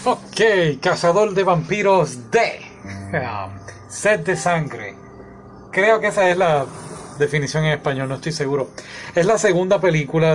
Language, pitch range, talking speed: Spanish, 130-170 Hz, 140 wpm